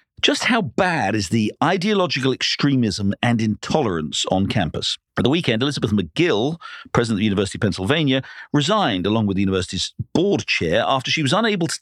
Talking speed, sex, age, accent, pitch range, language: 175 wpm, male, 50-69, British, 105-160 Hz, English